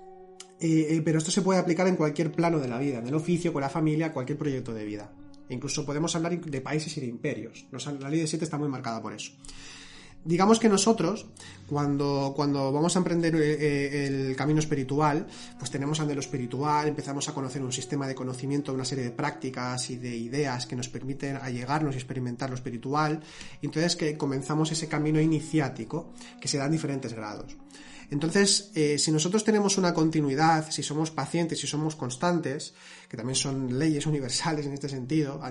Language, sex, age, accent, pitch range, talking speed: Spanish, male, 30-49, Spanish, 140-170 Hz, 190 wpm